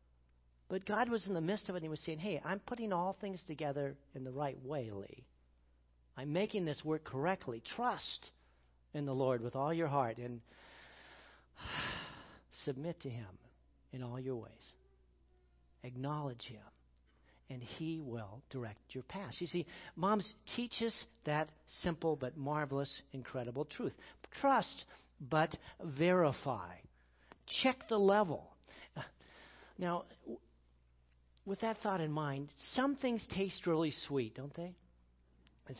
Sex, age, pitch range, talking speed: male, 60-79, 115-185 Hz, 140 wpm